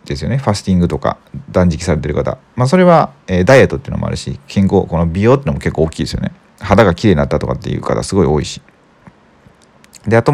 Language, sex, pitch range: Japanese, male, 80-115 Hz